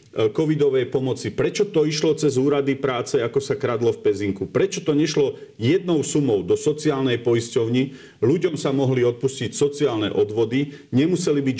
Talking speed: 150 wpm